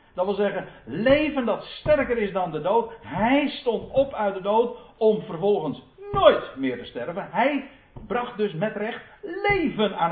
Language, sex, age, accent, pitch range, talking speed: Dutch, male, 50-69, Dutch, 160-245 Hz, 170 wpm